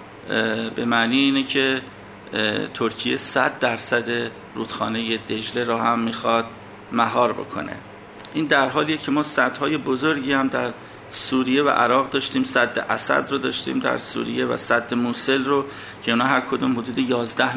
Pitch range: 115-140 Hz